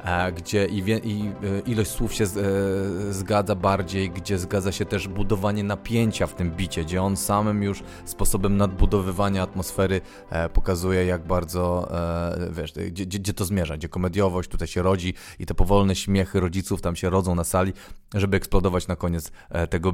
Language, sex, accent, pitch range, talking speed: Polish, male, native, 90-110 Hz, 155 wpm